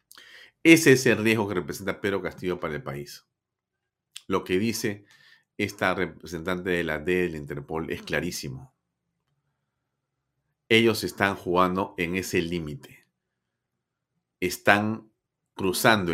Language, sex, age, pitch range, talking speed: Spanish, male, 40-59, 85-115 Hz, 115 wpm